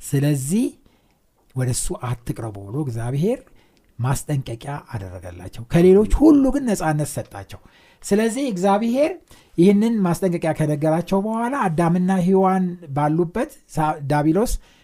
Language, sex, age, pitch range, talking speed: Amharic, male, 60-79, 125-200 Hz, 95 wpm